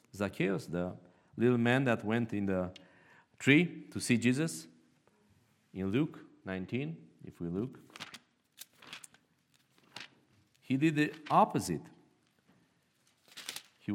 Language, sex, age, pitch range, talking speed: English, male, 50-69, 95-140 Hz, 100 wpm